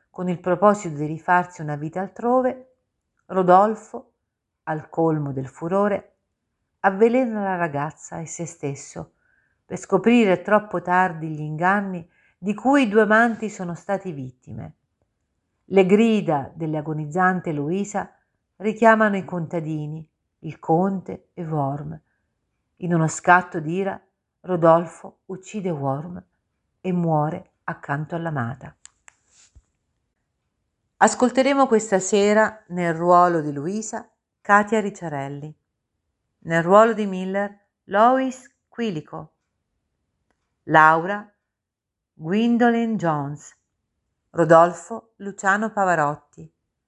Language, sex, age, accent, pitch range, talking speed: Italian, female, 50-69, native, 155-205 Hz, 95 wpm